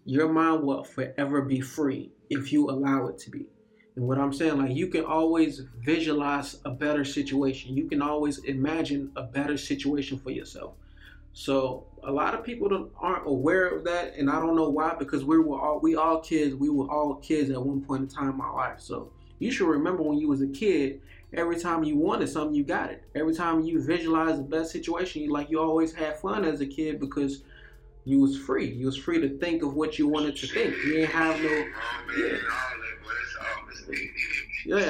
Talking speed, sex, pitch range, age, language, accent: 210 wpm, male, 135-165 Hz, 20-39, English, American